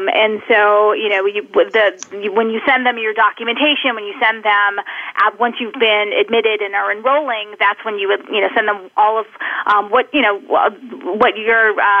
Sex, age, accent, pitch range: female, 30-49, American, 210-270 Hz